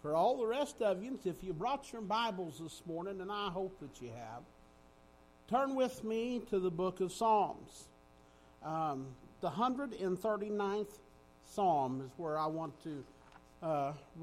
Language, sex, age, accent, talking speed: English, male, 50-69, American, 155 wpm